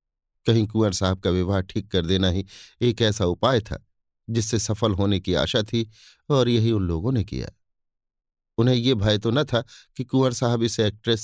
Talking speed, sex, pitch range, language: 190 wpm, male, 90-115 Hz, Hindi